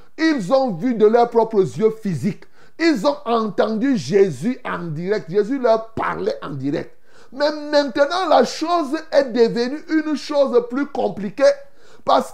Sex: male